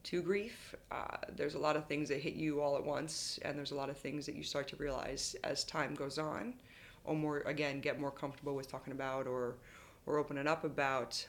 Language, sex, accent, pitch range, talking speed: English, female, American, 135-145 Hz, 230 wpm